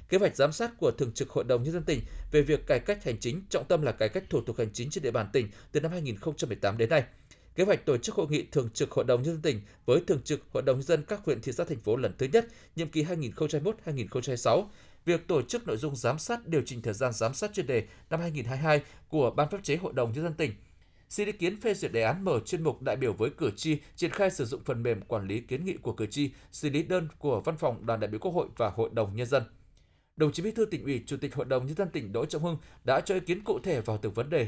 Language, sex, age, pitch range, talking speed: Vietnamese, male, 20-39, 115-165 Hz, 285 wpm